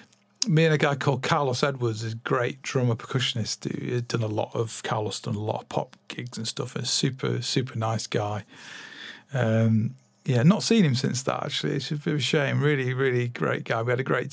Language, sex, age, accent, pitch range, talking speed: English, male, 40-59, British, 120-150 Hz, 220 wpm